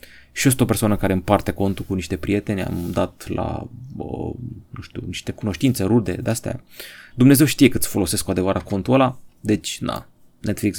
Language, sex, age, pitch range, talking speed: Romanian, male, 30-49, 100-130 Hz, 190 wpm